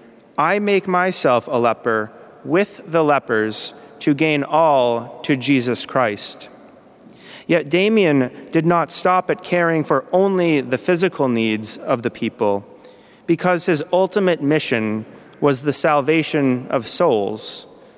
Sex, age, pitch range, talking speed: male, 30-49, 130-175 Hz, 125 wpm